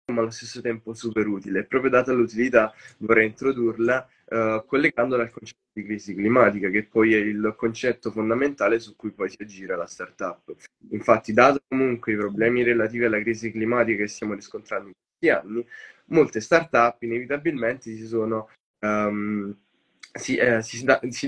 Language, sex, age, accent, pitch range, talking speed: Italian, male, 10-29, native, 110-135 Hz, 145 wpm